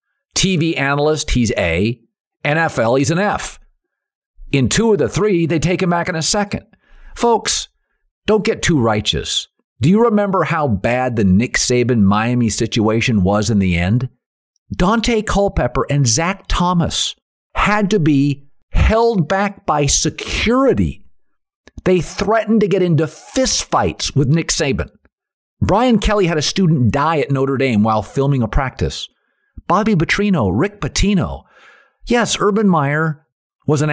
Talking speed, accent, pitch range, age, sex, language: 145 wpm, American, 125-210 Hz, 50-69, male, English